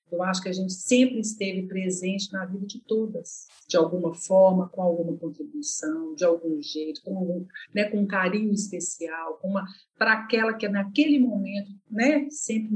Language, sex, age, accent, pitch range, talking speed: Portuguese, female, 50-69, Brazilian, 185-235 Hz, 155 wpm